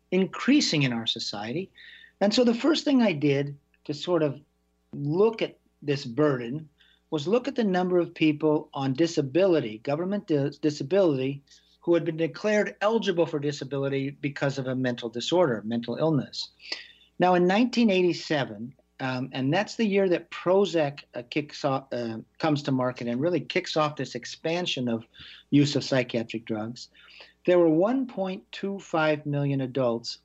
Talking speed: 145 wpm